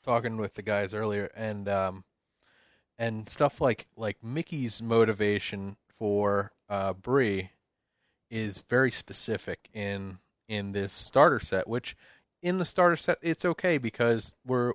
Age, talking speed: 30-49, 135 wpm